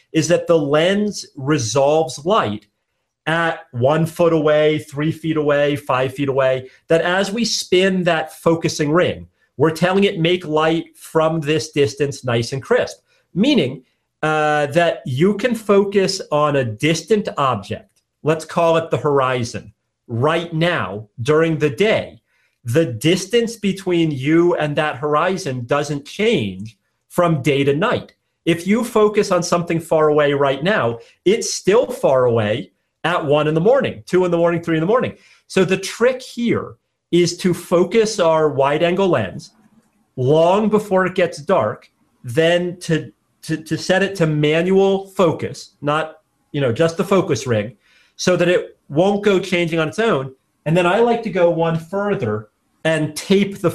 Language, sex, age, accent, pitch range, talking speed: English, male, 40-59, American, 145-185 Hz, 160 wpm